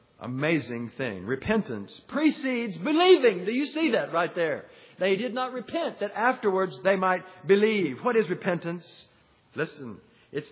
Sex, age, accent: male, 50-69, American